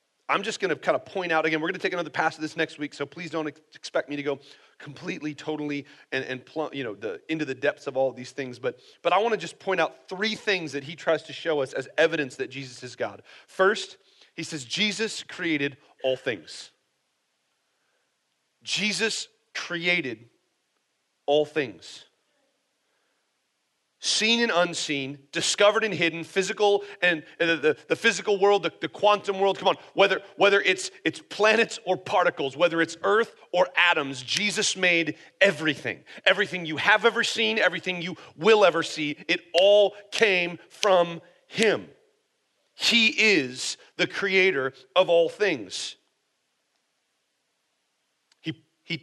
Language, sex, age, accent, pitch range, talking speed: English, male, 40-59, American, 150-200 Hz, 165 wpm